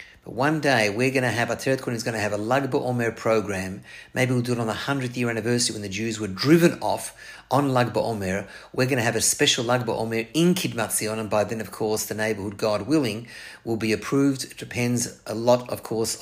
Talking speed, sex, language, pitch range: 235 wpm, male, English, 110-130 Hz